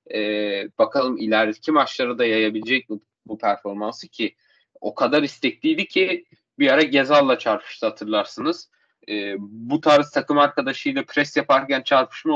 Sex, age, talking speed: male, 30-49, 130 wpm